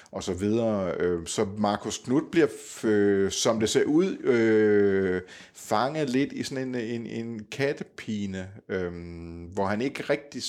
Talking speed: 125 wpm